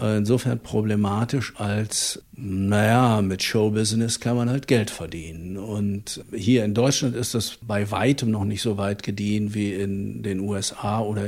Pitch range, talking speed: 100-120 Hz, 155 wpm